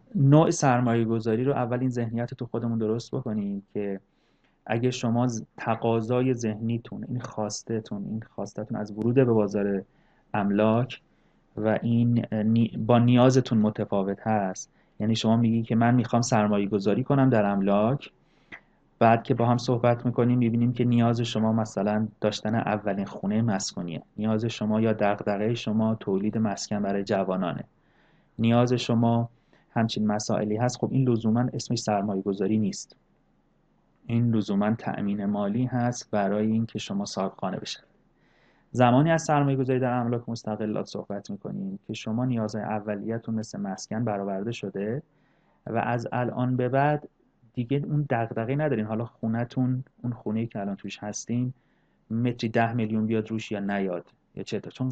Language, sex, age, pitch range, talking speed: Persian, male, 30-49, 105-125 Hz, 140 wpm